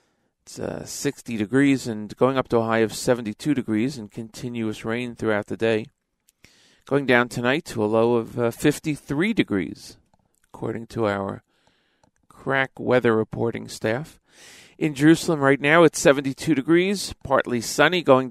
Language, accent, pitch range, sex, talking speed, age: English, American, 110-150 Hz, male, 150 wpm, 40-59